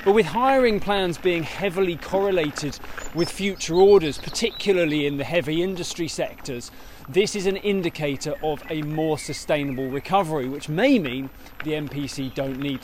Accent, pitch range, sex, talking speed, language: British, 140-195 Hz, male, 150 wpm, English